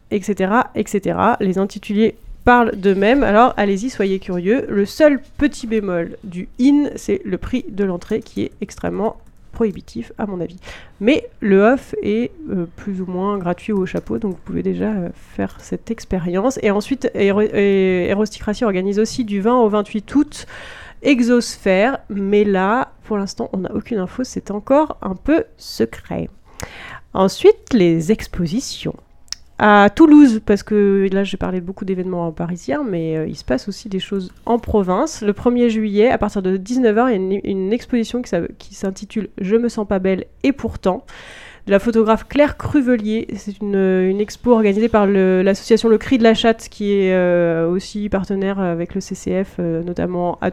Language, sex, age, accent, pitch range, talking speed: French, female, 30-49, French, 190-235 Hz, 175 wpm